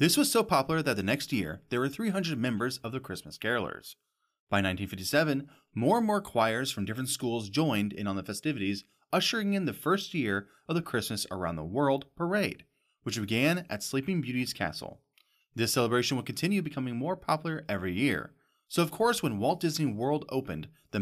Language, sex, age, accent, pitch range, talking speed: English, male, 30-49, American, 105-160 Hz, 190 wpm